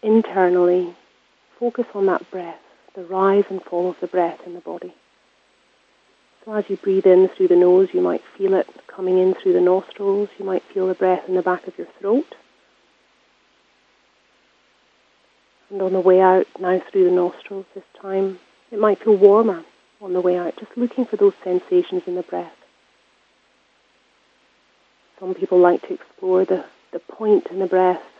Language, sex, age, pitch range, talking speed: English, female, 30-49, 180-210 Hz, 170 wpm